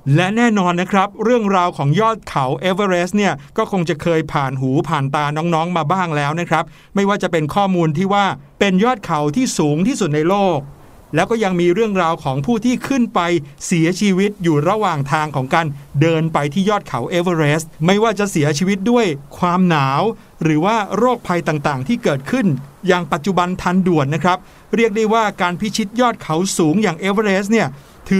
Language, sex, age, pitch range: Thai, male, 60-79, 160-210 Hz